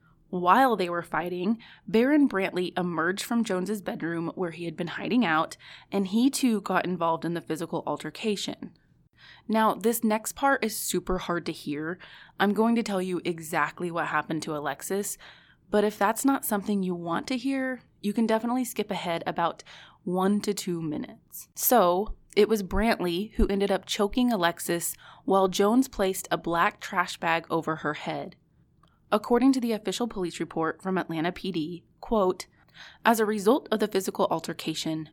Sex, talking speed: female, 170 wpm